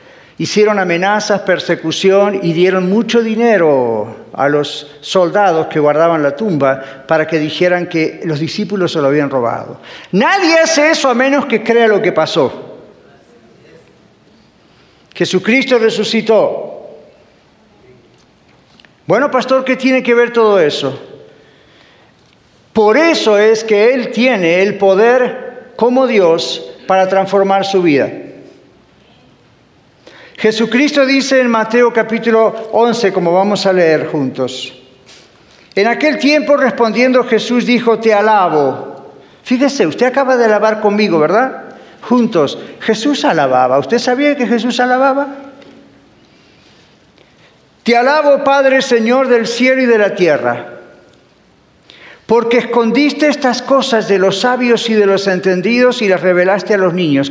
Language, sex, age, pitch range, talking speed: Spanish, male, 50-69, 180-250 Hz, 125 wpm